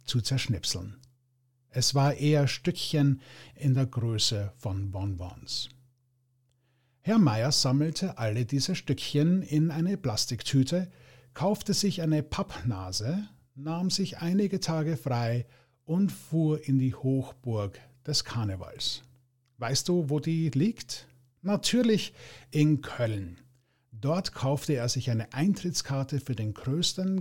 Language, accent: English, German